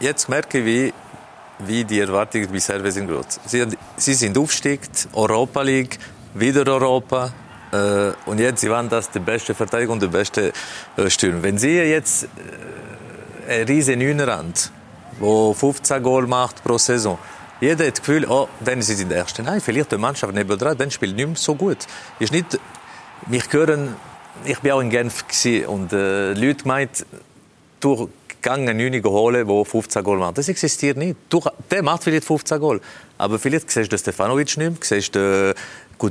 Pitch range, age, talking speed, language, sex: 105-145 Hz, 40-59, 165 wpm, German, male